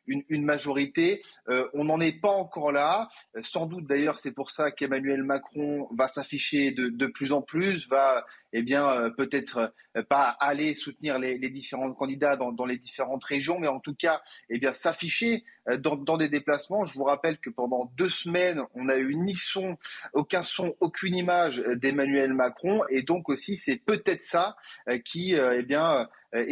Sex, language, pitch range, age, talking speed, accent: male, French, 135-175 Hz, 30-49, 195 wpm, French